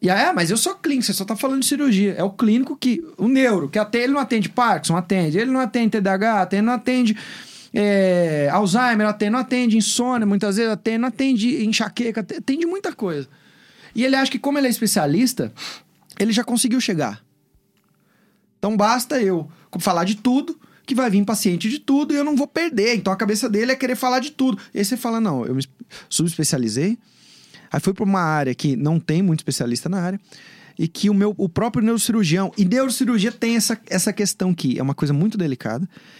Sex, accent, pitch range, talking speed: male, Brazilian, 165-235 Hz, 210 wpm